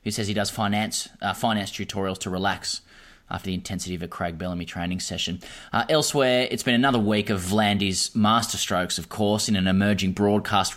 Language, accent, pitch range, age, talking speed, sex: English, Australian, 95-110 Hz, 20-39, 195 wpm, male